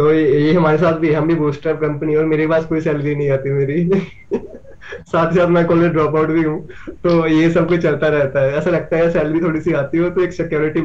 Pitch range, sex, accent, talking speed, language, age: 135-165 Hz, male, native, 240 wpm, Hindi, 20-39